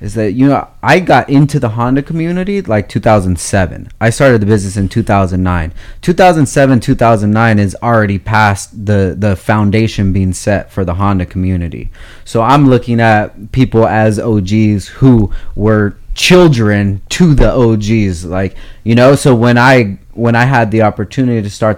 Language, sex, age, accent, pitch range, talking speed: English, male, 20-39, American, 100-130 Hz, 160 wpm